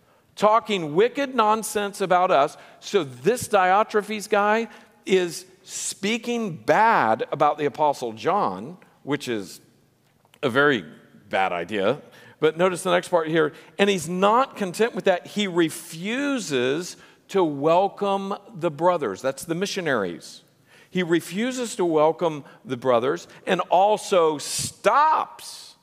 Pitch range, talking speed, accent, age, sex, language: 160-210 Hz, 120 wpm, American, 50-69, male, English